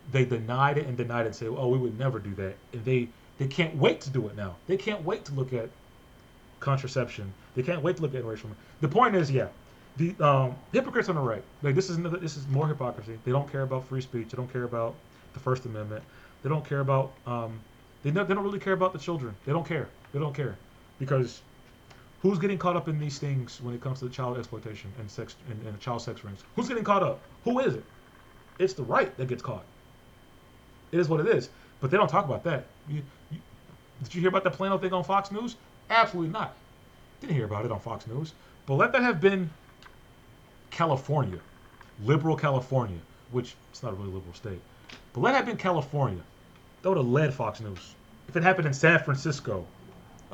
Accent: American